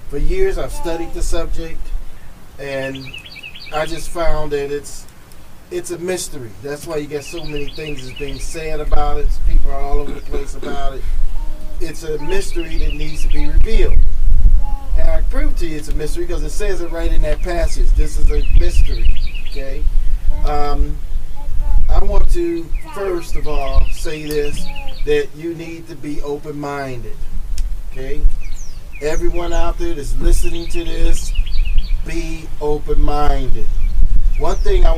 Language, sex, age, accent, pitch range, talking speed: English, male, 40-59, American, 120-160 Hz, 160 wpm